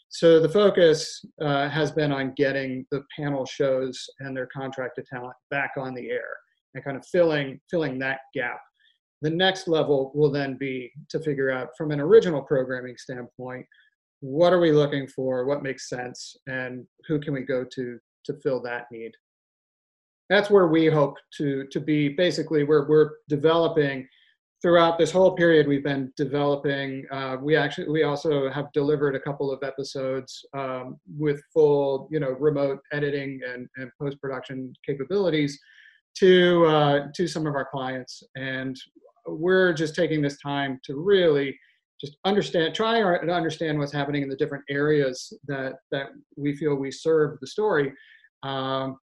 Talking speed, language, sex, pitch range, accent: 160 wpm, English, male, 135-160 Hz, American